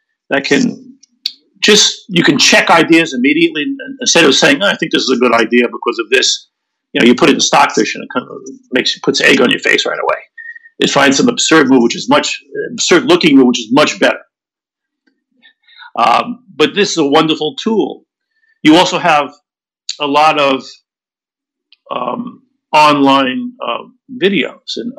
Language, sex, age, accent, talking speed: English, male, 50-69, American, 180 wpm